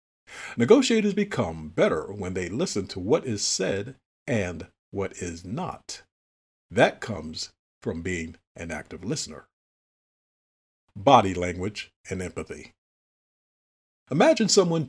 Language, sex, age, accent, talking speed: English, male, 50-69, American, 110 wpm